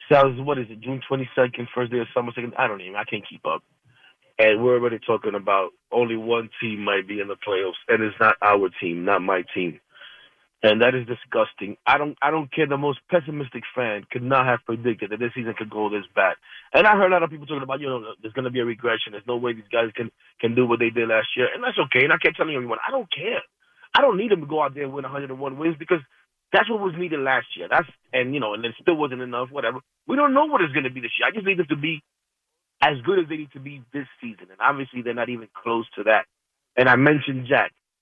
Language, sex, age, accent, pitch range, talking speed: English, male, 30-49, American, 120-155 Hz, 270 wpm